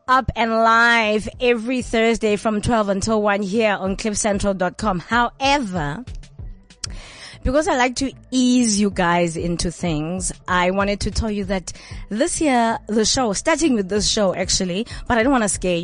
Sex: female